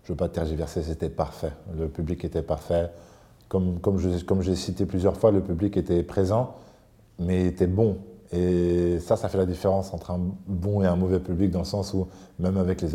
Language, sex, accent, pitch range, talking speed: French, male, French, 85-105 Hz, 220 wpm